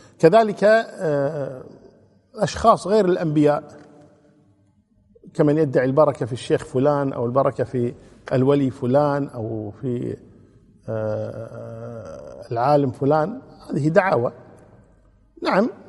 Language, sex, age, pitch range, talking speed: Arabic, male, 50-69, 130-155 Hz, 85 wpm